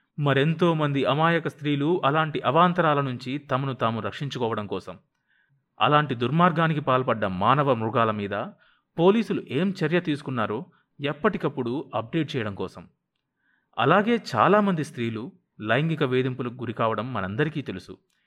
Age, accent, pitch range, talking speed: 30-49, native, 115-165 Hz, 110 wpm